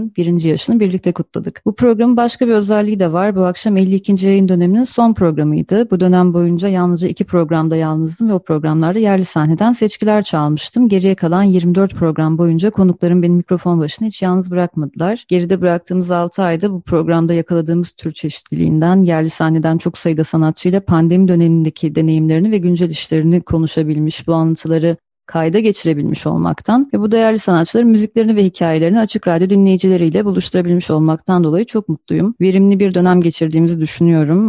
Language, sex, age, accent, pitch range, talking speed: Turkish, female, 30-49, native, 160-195 Hz, 155 wpm